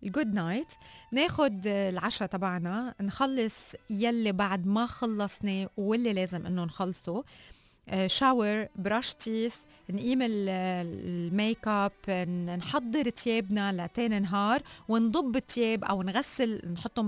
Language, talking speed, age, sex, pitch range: Arabic, 110 wpm, 30-49, female, 185-225 Hz